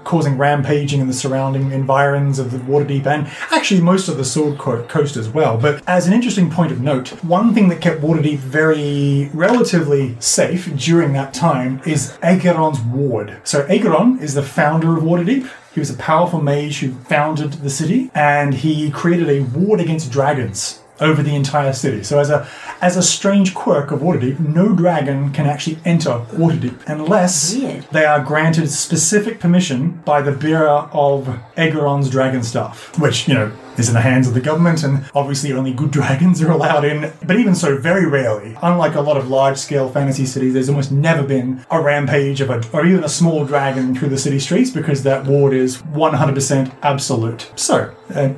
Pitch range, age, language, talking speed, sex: 135-165 Hz, 30-49, English, 185 wpm, male